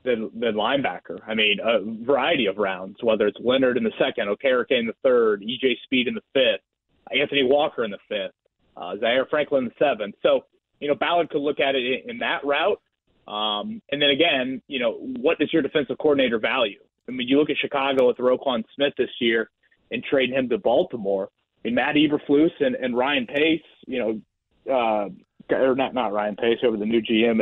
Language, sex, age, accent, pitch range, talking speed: English, male, 30-49, American, 125-155 Hz, 210 wpm